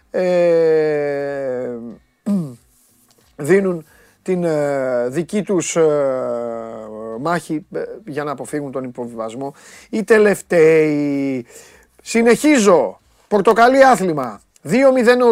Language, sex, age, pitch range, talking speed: Greek, male, 30-49, 145-210 Hz, 80 wpm